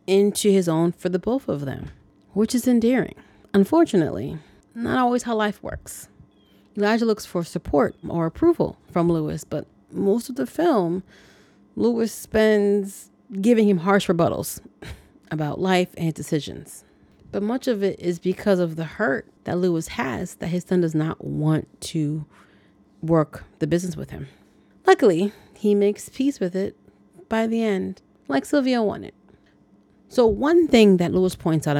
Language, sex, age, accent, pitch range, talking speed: English, female, 30-49, American, 150-205 Hz, 155 wpm